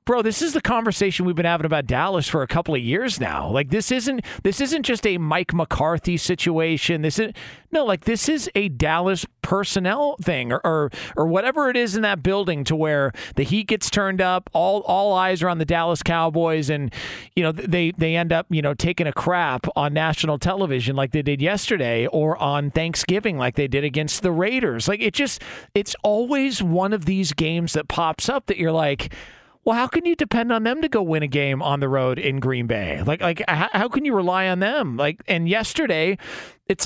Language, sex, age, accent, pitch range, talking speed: English, male, 40-59, American, 150-215 Hz, 215 wpm